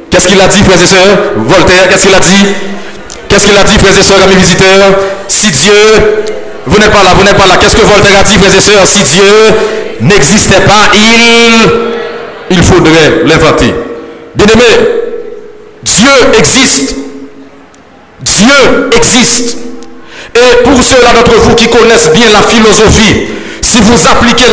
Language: French